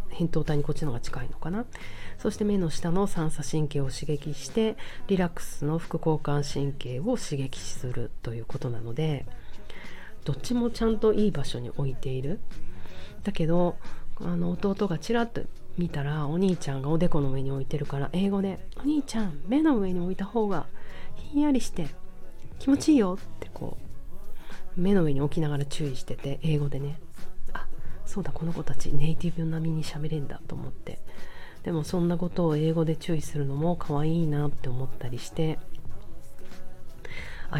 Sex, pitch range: female, 145-185 Hz